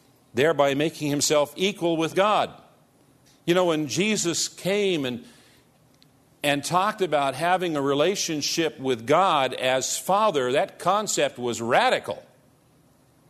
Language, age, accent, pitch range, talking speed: English, 50-69, American, 130-180 Hz, 115 wpm